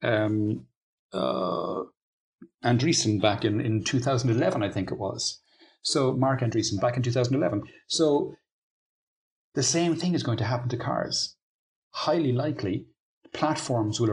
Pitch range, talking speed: 100-125 Hz, 130 wpm